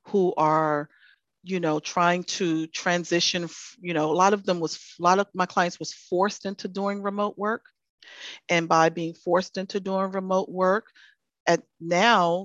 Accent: American